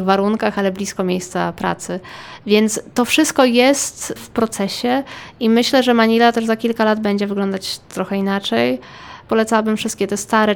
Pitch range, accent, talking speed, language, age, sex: 205-230 Hz, native, 155 wpm, Polish, 20-39, female